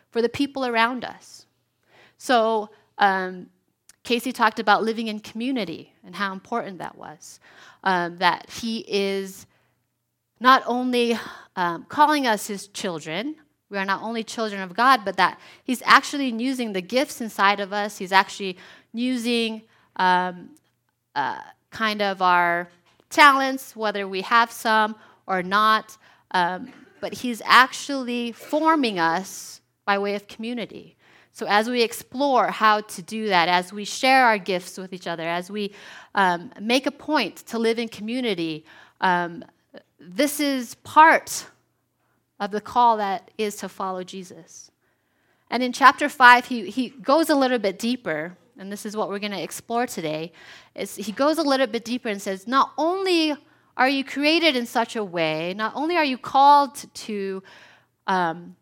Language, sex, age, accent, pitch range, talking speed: English, female, 30-49, American, 190-255 Hz, 155 wpm